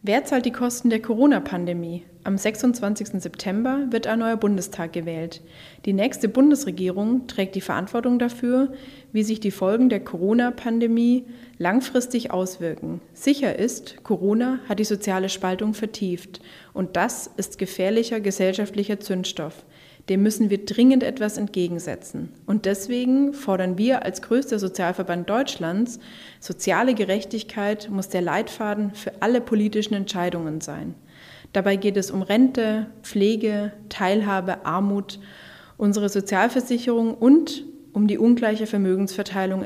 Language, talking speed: German, 125 wpm